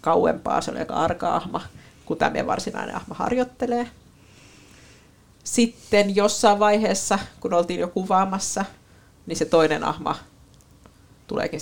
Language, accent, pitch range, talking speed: Finnish, native, 160-220 Hz, 115 wpm